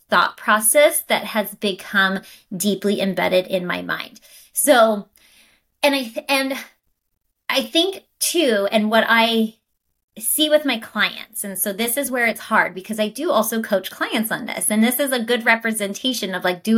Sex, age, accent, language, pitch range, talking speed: female, 20-39, American, English, 195-240 Hz, 170 wpm